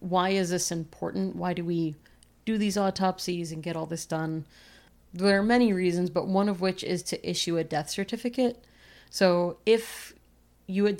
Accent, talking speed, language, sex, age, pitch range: American, 180 wpm, English, female, 30-49, 165-185 Hz